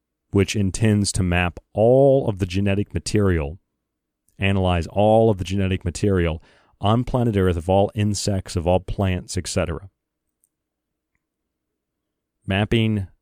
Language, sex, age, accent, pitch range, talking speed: English, male, 40-59, American, 85-105 Hz, 120 wpm